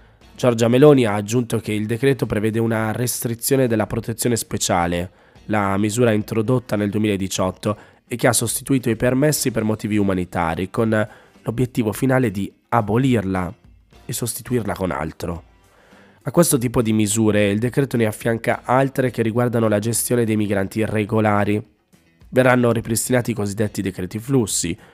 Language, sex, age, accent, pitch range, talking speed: Italian, male, 20-39, native, 100-125 Hz, 140 wpm